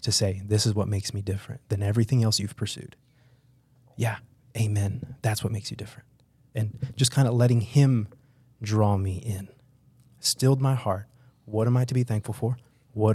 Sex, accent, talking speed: male, American, 185 wpm